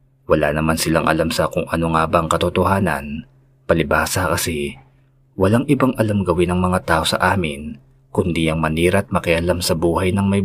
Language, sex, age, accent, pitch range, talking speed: Filipino, male, 20-39, native, 85-130 Hz, 170 wpm